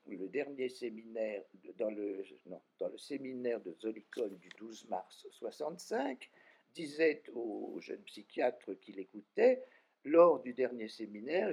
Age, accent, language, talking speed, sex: 60-79, French, French, 135 wpm, male